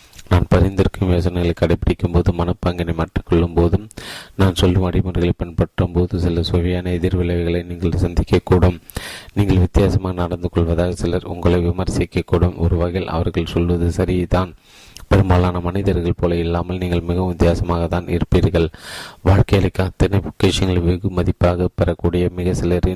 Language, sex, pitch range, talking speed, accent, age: Tamil, male, 85-95 Hz, 120 wpm, native, 30-49